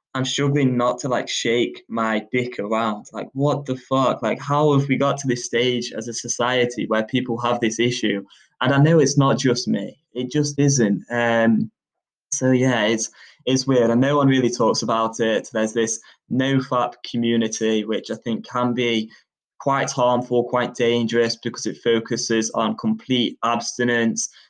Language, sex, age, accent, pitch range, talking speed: English, male, 10-29, British, 110-125 Hz, 175 wpm